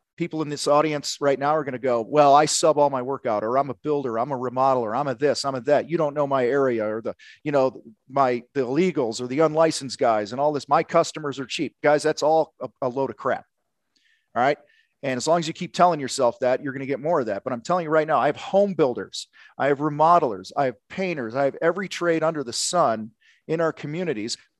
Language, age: English, 40-59